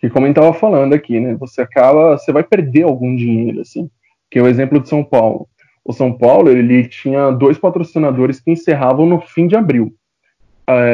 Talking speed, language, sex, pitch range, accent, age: 195 wpm, Portuguese, male, 120-150 Hz, Brazilian, 20-39